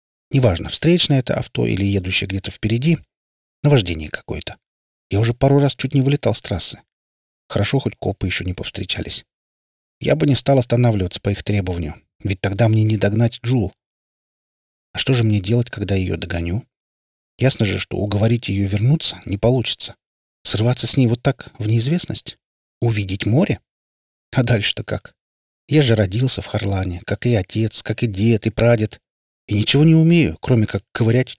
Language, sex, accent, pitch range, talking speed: Russian, male, native, 95-120 Hz, 170 wpm